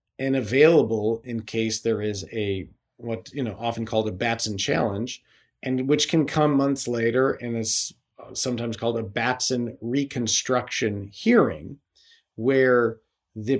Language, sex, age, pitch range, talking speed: English, male, 50-69, 110-135 Hz, 135 wpm